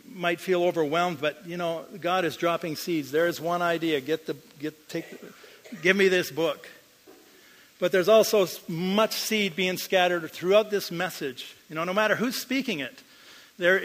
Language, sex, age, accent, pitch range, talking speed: English, male, 50-69, American, 160-205 Hz, 175 wpm